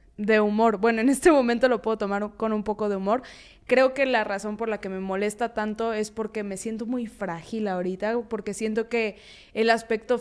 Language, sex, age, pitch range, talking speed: Spanish, female, 20-39, 205-240 Hz, 210 wpm